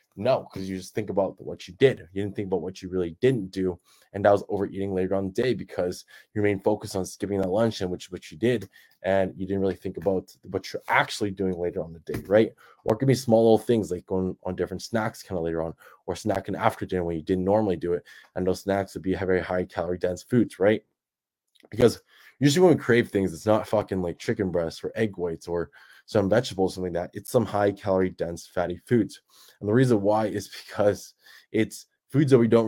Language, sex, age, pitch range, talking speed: English, male, 20-39, 90-110 Hz, 240 wpm